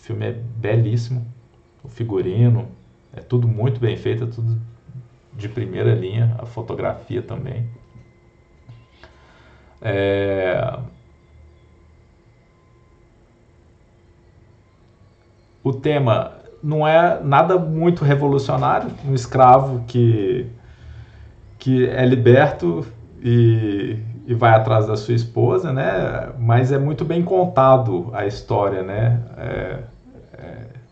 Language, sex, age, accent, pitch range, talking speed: Portuguese, male, 50-69, Brazilian, 110-130 Hz, 95 wpm